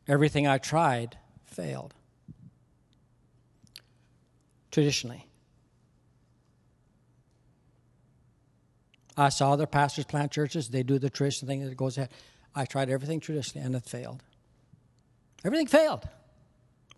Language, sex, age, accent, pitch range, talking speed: English, male, 60-79, American, 125-145 Hz, 105 wpm